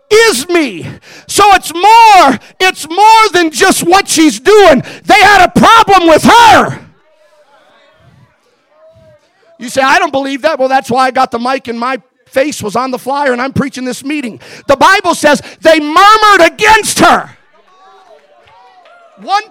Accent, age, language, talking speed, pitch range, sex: American, 50-69, English, 155 wpm, 275-370 Hz, male